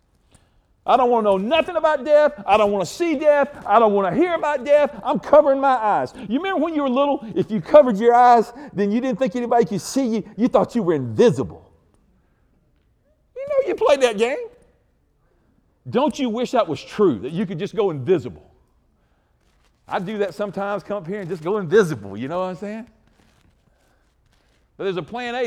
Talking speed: 205 wpm